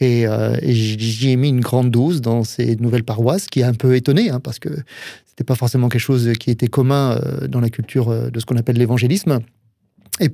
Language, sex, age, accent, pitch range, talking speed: French, male, 30-49, French, 120-145 Hz, 225 wpm